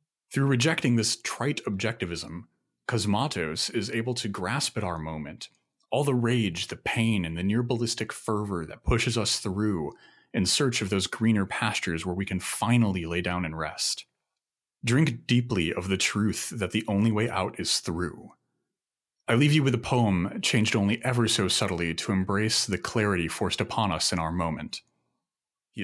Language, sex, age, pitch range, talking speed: English, male, 30-49, 90-110 Hz, 170 wpm